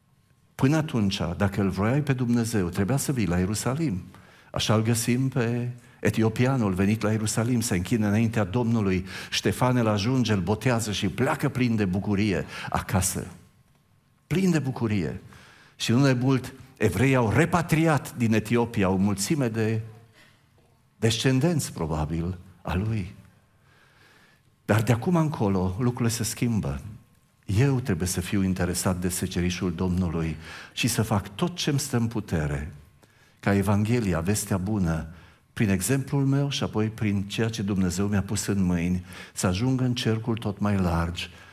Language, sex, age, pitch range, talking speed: Romanian, male, 50-69, 95-125 Hz, 145 wpm